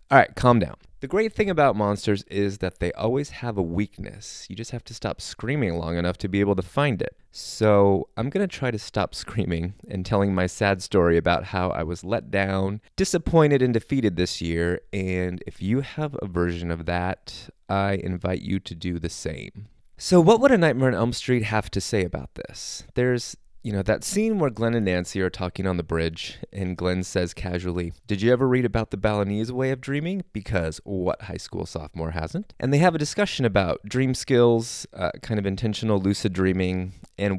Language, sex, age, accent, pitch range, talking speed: English, male, 30-49, American, 90-125 Hz, 210 wpm